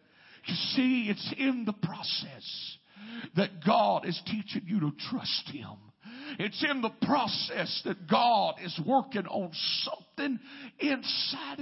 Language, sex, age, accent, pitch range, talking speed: English, male, 50-69, American, 185-270 Hz, 130 wpm